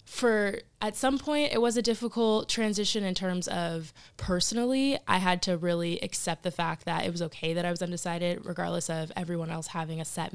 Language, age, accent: English, 20-39, American